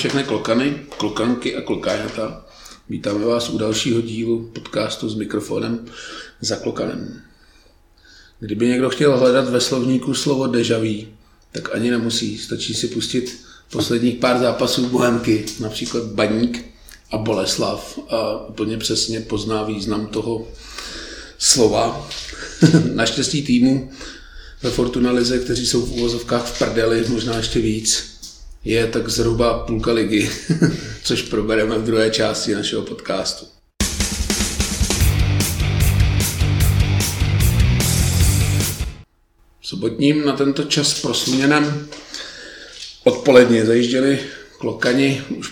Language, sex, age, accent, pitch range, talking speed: Czech, male, 40-59, native, 110-125 Hz, 105 wpm